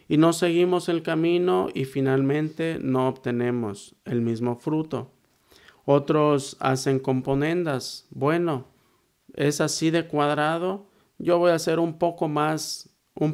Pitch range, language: 130-160 Hz, Spanish